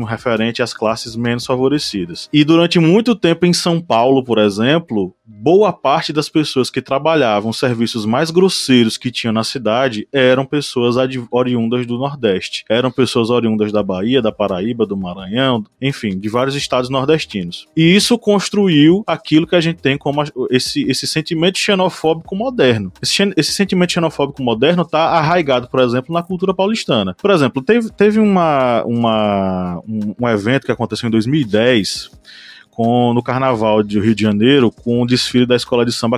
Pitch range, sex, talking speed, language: 115-160 Hz, male, 170 wpm, Portuguese